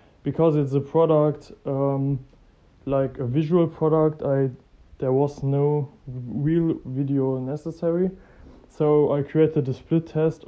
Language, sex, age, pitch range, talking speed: English, male, 20-39, 135-160 Hz, 130 wpm